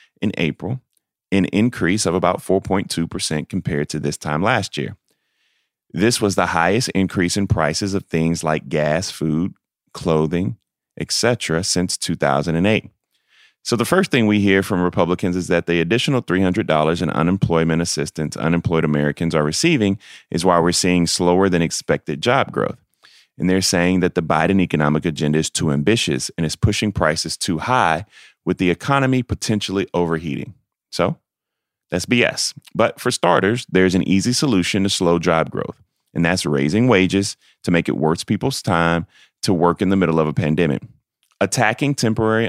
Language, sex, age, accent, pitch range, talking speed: English, male, 30-49, American, 80-100 Hz, 160 wpm